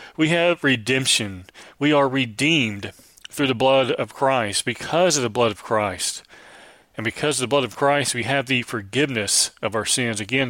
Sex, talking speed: male, 185 wpm